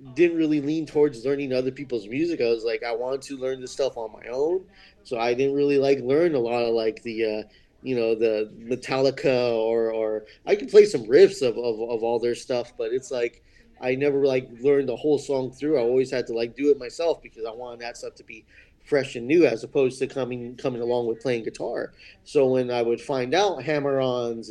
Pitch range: 120-145 Hz